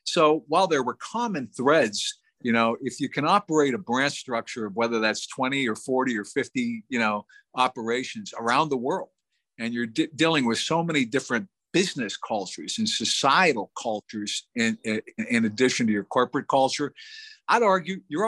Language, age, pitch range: English, 50-69, 120-190 Hz